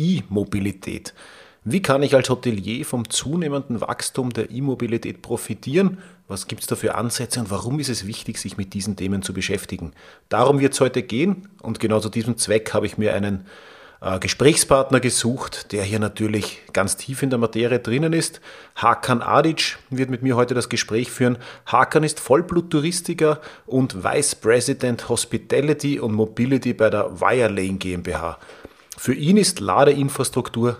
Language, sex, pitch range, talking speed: German, male, 110-145 Hz, 160 wpm